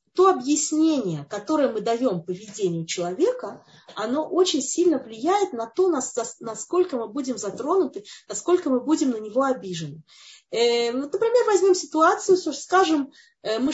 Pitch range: 240-370 Hz